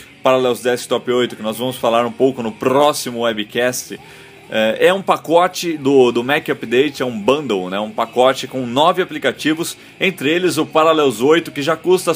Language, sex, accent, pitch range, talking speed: Portuguese, male, Brazilian, 125-160 Hz, 185 wpm